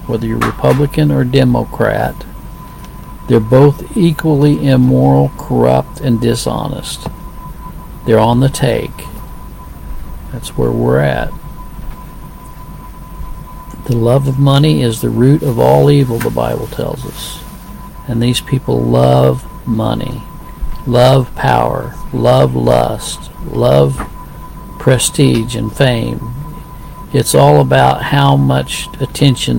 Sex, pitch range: male, 100-135 Hz